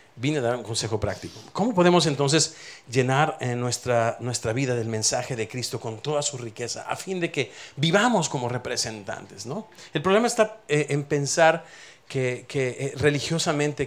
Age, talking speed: 40-59, 160 wpm